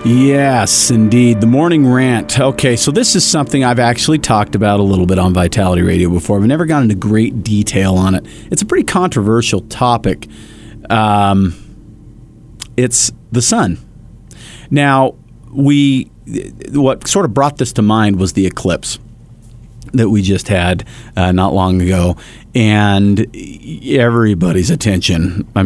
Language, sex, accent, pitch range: English, male, American, 95-120 Hz